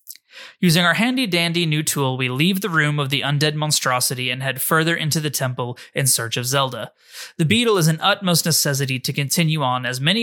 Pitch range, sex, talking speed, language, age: 130-170 Hz, male, 200 wpm, English, 20-39